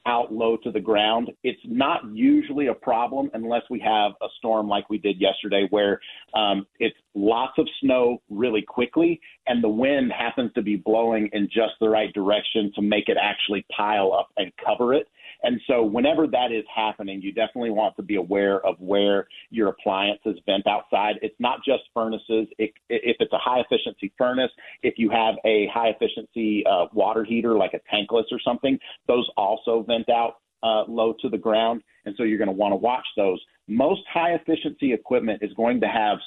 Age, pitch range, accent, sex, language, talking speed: 40-59, 105-130 Hz, American, male, English, 185 wpm